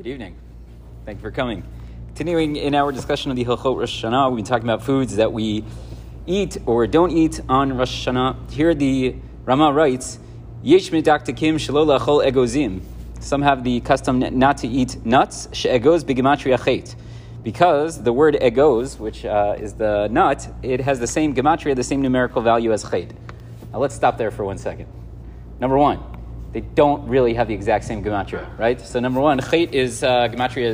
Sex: male